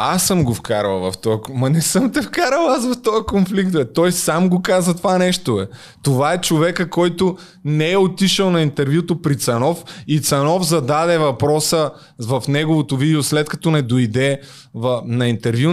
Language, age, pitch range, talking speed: Bulgarian, 20-39, 125-175 Hz, 185 wpm